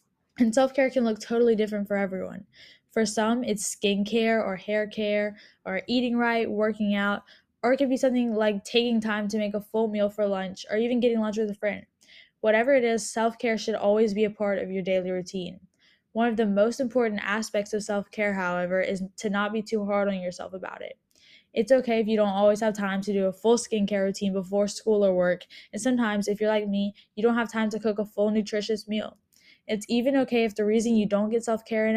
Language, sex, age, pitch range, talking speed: English, female, 10-29, 200-230 Hz, 230 wpm